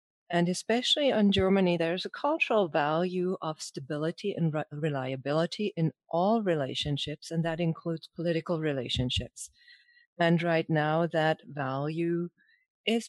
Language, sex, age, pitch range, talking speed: English, female, 40-59, 145-180 Hz, 125 wpm